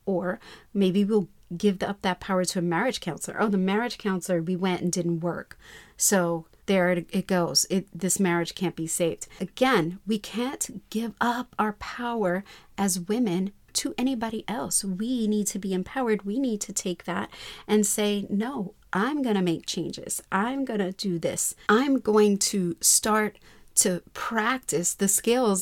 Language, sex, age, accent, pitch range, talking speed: English, female, 40-59, American, 185-230 Hz, 170 wpm